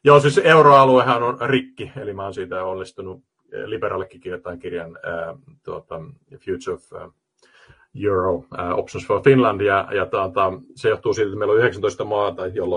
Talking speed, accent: 150 wpm, native